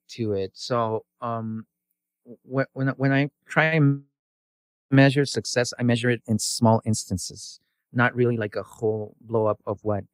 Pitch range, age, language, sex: 105-120 Hz, 30-49, English, male